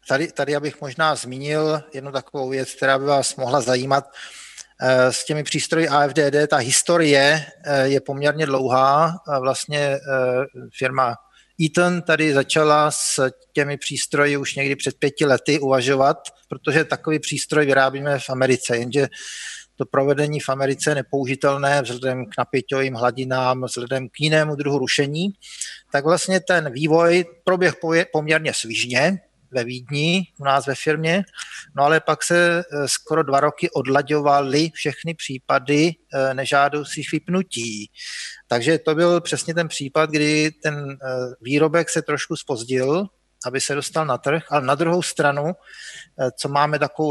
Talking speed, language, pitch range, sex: 135 wpm, Czech, 135-160 Hz, male